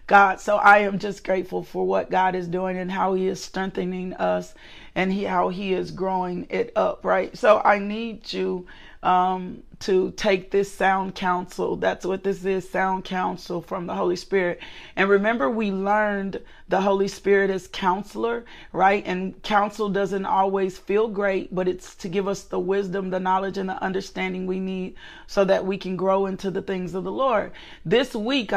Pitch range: 185-200 Hz